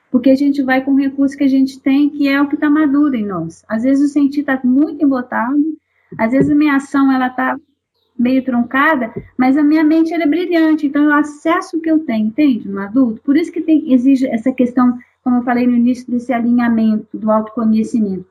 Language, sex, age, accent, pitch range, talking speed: Portuguese, female, 40-59, Brazilian, 245-310 Hz, 215 wpm